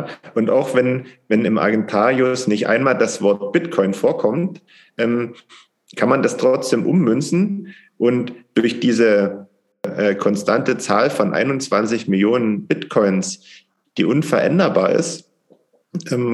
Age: 40-59